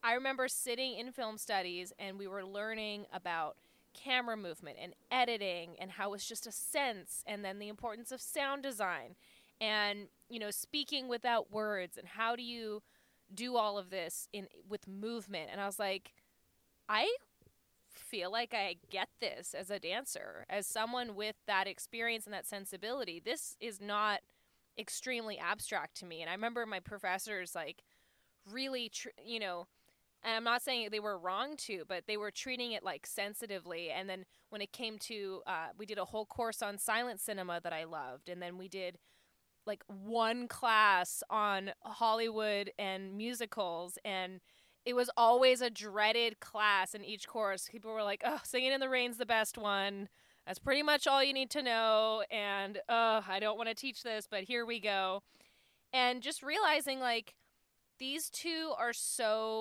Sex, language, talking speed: female, English, 175 wpm